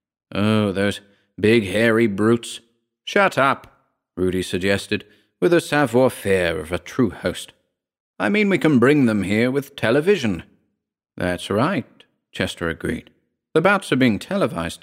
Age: 40-59